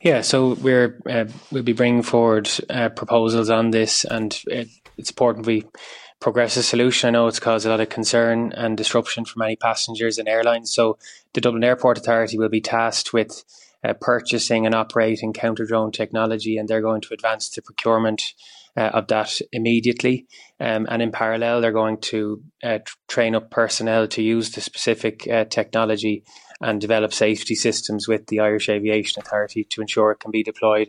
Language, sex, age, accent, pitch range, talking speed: English, male, 20-39, Irish, 110-115 Hz, 180 wpm